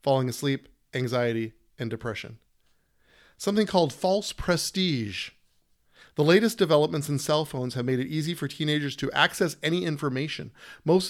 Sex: male